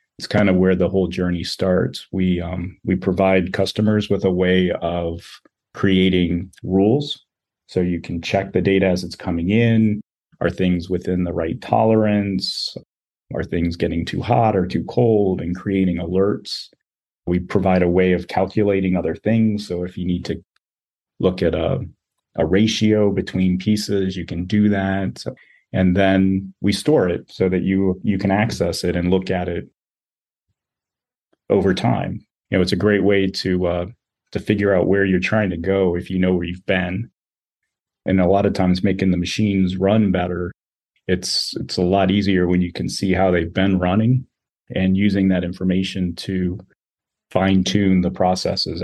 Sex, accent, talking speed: male, American, 175 wpm